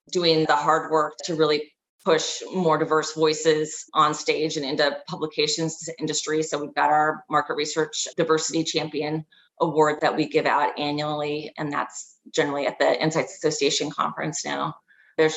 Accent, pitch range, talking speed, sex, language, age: American, 155-180 Hz, 155 wpm, female, English, 30-49